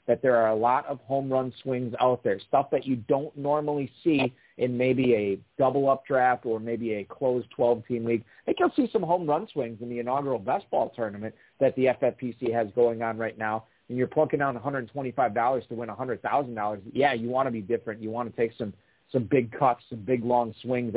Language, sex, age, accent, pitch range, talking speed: English, male, 40-59, American, 110-130 Hz, 215 wpm